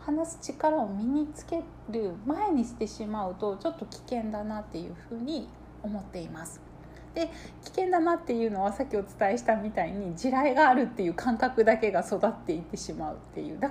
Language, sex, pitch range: Japanese, female, 190-270 Hz